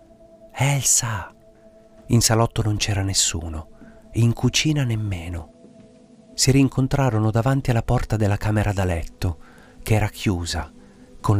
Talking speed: 115 wpm